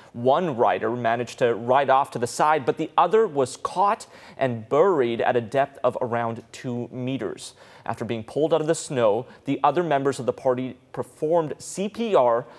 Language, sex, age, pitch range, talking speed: English, male, 30-49, 125-160 Hz, 180 wpm